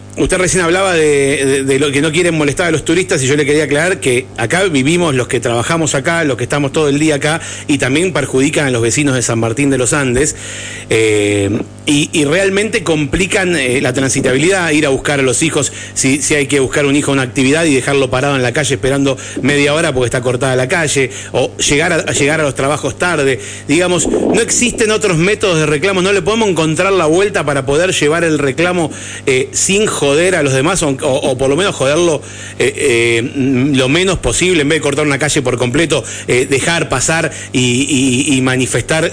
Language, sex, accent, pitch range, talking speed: Spanish, male, Argentinian, 130-165 Hz, 215 wpm